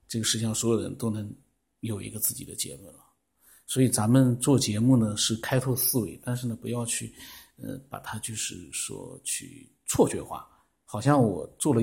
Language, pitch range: Chinese, 115-145 Hz